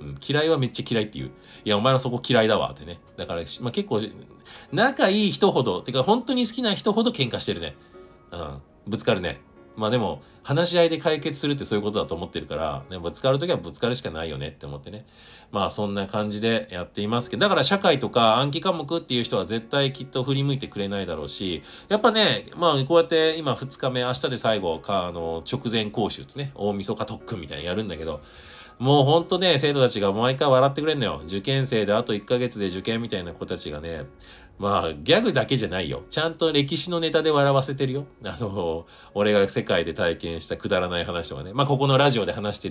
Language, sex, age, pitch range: Japanese, male, 40-59, 95-140 Hz